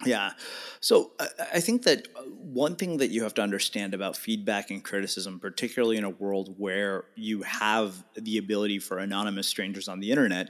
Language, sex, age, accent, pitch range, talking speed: English, male, 30-49, American, 105-140 Hz, 175 wpm